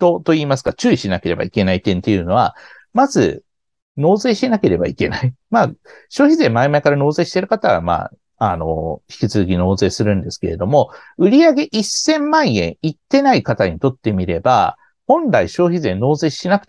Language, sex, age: Japanese, male, 50-69